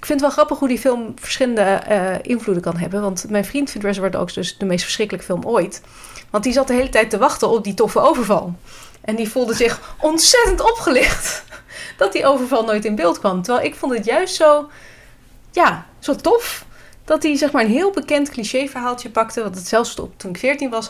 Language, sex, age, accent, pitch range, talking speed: Dutch, female, 30-49, Dutch, 190-245 Hz, 215 wpm